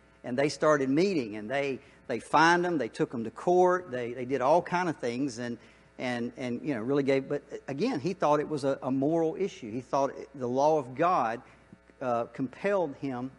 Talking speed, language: 210 wpm, English